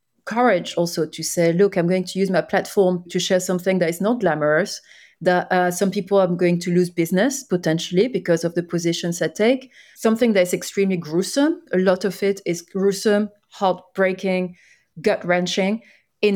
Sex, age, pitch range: female, 30-49, 180-210 Hz